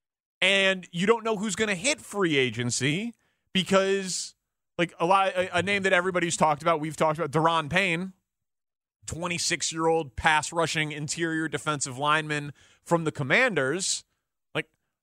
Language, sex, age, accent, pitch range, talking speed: English, male, 30-49, American, 140-185 Hz, 140 wpm